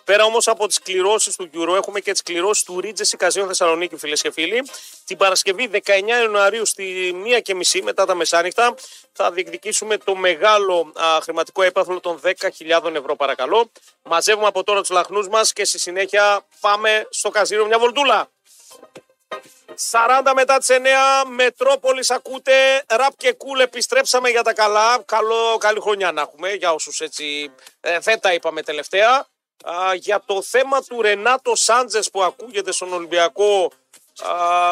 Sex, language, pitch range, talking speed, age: male, Greek, 180-240 Hz, 155 wpm, 40-59